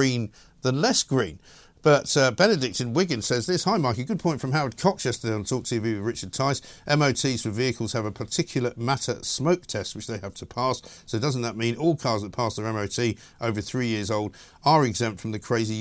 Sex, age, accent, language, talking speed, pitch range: male, 50-69, British, English, 225 wpm, 110-150 Hz